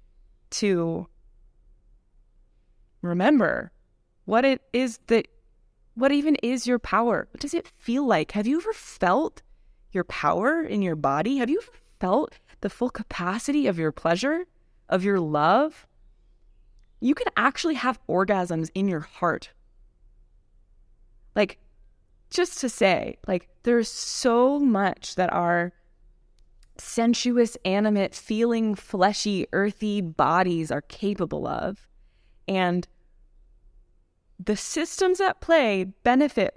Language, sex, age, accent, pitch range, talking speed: English, female, 20-39, American, 170-250 Hz, 115 wpm